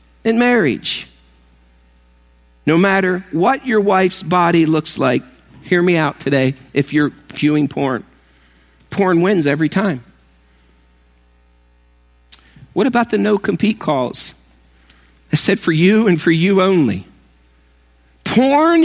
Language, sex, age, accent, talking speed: English, male, 50-69, American, 115 wpm